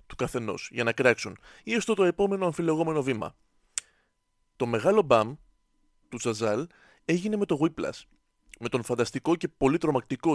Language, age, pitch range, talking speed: Greek, 30-49, 125-180 Hz, 150 wpm